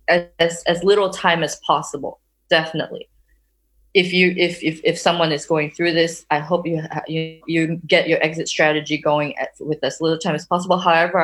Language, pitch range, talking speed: English, 155-180 Hz, 190 wpm